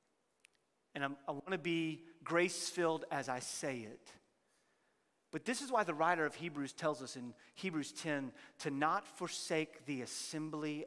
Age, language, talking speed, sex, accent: 40-59, English, 160 wpm, male, American